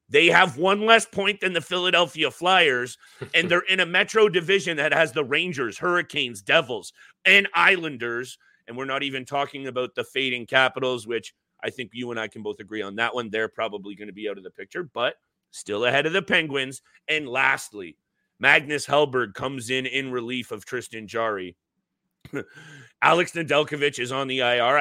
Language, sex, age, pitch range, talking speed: English, male, 30-49, 125-170 Hz, 185 wpm